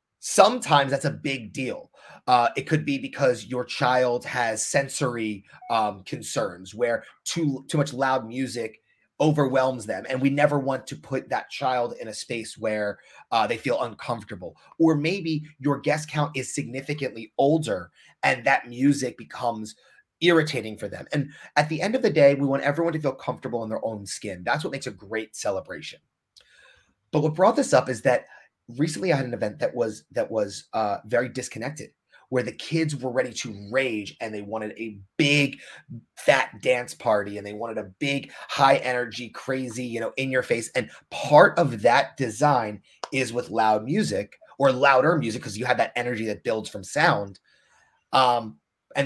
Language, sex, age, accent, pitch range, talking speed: English, male, 30-49, American, 115-145 Hz, 180 wpm